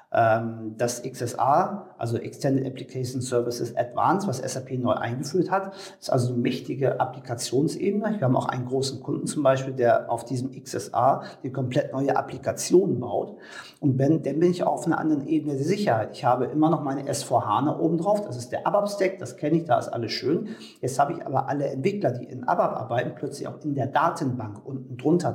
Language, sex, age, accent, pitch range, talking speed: German, male, 50-69, German, 125-155 Hz, 195 wpm